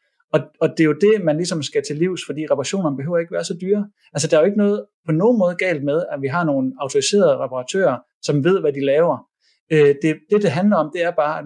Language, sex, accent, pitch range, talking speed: Danish, male, native, 140-200 Hz, 245 wpm